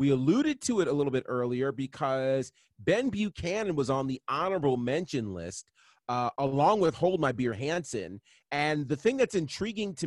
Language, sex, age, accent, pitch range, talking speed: English, male, 30-49, American, 125-165 Hz, 180 wpm